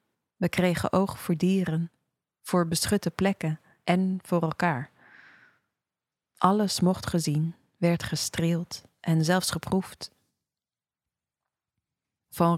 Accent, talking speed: Dutch, 95 wpm